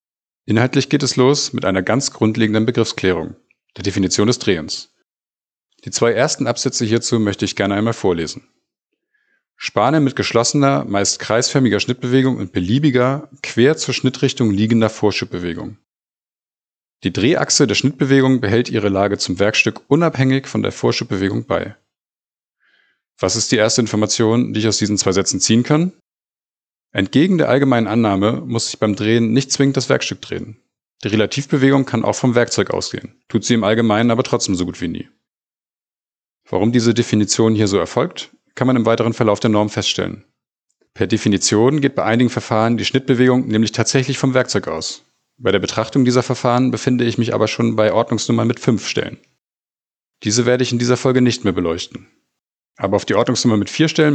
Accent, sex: German, male